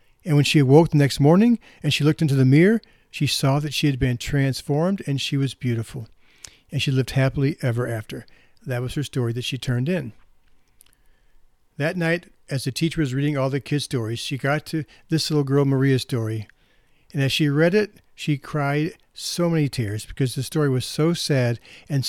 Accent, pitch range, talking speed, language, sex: American, 130-155 Hz, 200 wpm, English, male